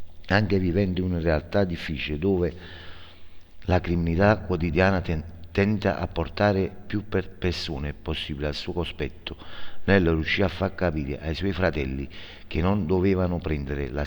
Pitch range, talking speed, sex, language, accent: 80-95 Hz, 145 wpm, male, Italian, native